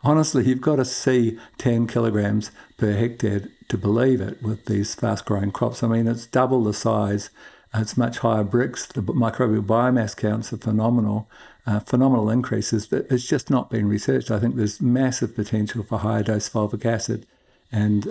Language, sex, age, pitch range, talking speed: English, male, 60-79, 110-125 Hz, 170 wpm